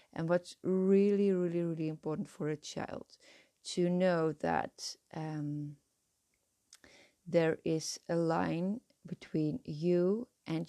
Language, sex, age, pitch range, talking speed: English, female, 30-49, 155-180 Hz, 110 wpm